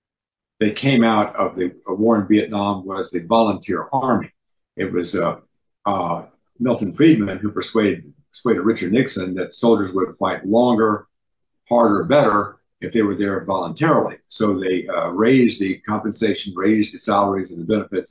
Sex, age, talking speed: male, 50-69, 155 wpm